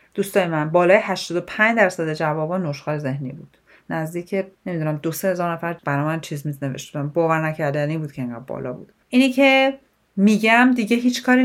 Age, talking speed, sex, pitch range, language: 40-59, 155 wpm, female, 155-225 Hz, Persian